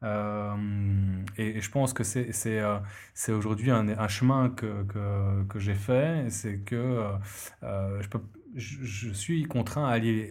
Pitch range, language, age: 105-125 Hz, French, 20-39